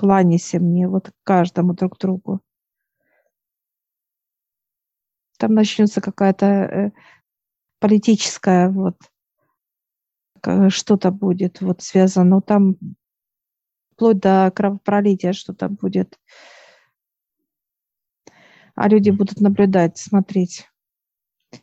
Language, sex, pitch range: Russian, female, 185-205 Hz